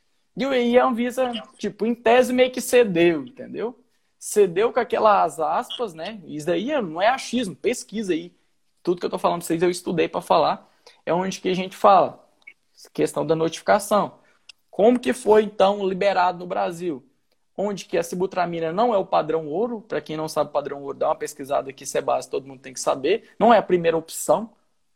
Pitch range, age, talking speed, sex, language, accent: 170-235 Hz, 20-39, 200 wpm, male, Portuguese, Brazilian